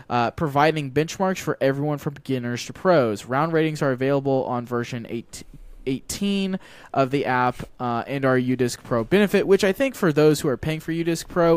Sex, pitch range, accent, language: male, 120-150 Hz, American, English